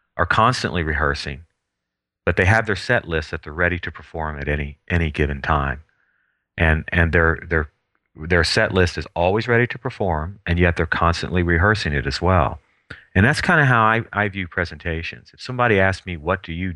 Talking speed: 195 wpm